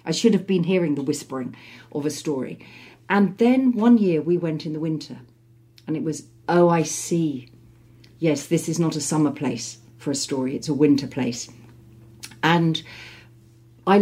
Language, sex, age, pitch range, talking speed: English, female, 40-59, 130-155 Hz, 175 wpm